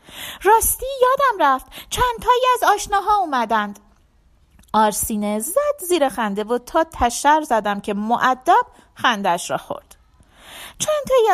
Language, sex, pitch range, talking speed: Persian, female, 240-330 Hz, 110 wpm